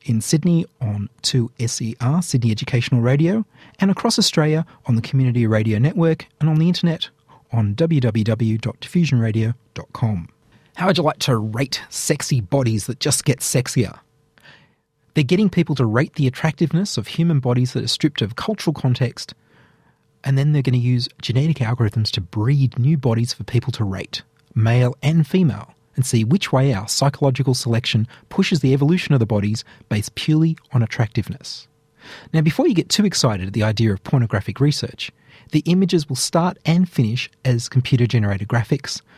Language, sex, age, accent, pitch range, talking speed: English, male, 30-49, Australian, 120-155 Hz, 160 wpm